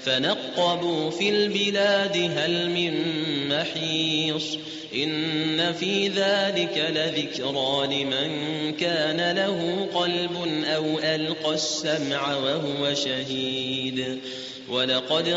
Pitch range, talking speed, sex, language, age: 145-175 Hz, 80 wpm, male, Arabic, 30-49